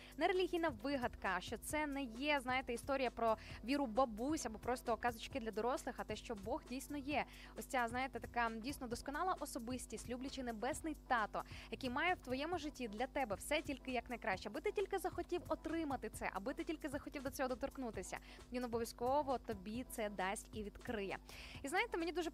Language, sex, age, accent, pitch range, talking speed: Ukrainian, female, 20-39, native, 235-290 Hz, 180 wpm